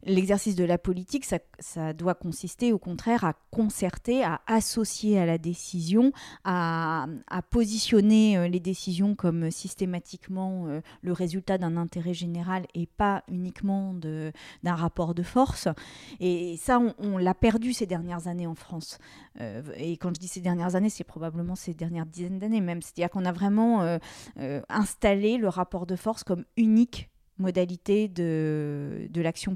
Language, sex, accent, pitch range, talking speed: French, female, French, 170-215 Hz, 155 wpm